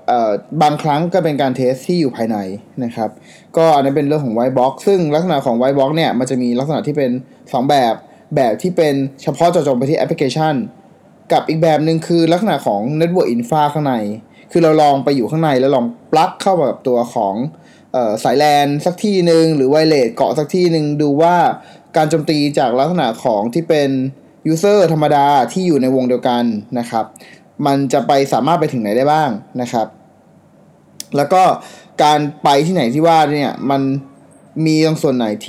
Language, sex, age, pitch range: Thai, male, 20-39, 130-165 Hz